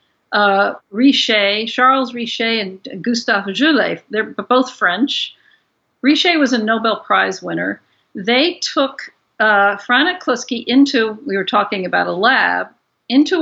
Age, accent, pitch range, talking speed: 50-69, American, 205-265 Hz, 130 wpm